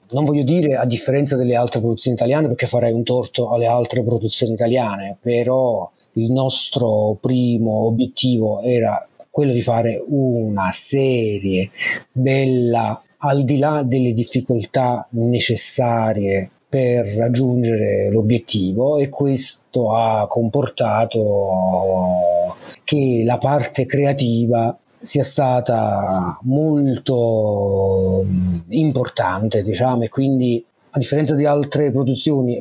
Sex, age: male, 30-49